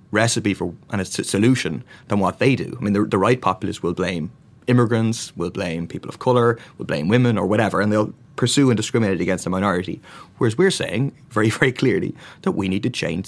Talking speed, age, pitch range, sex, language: 210 wpm, 30-49, 95-120 Hz, male, English